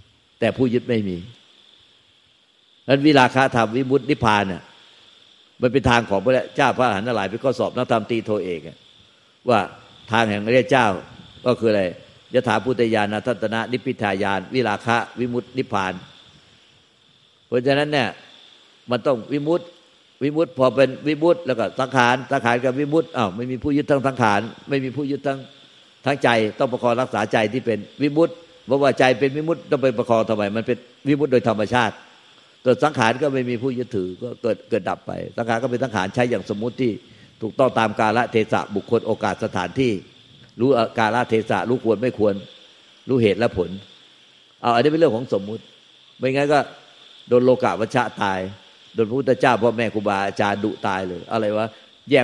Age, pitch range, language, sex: 60-79, 110-130 Hz, Thai, male